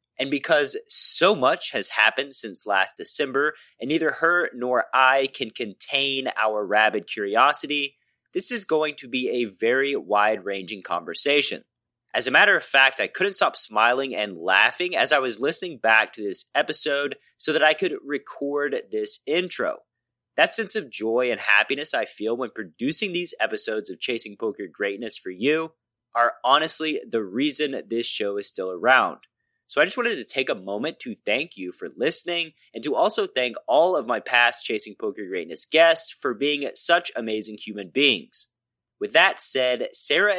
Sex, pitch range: male, 115-175 Hz